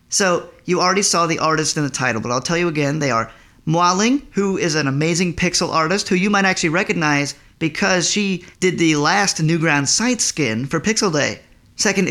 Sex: male